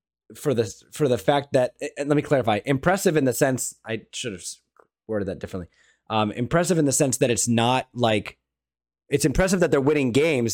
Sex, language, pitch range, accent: male, English, 105-130 Hz, American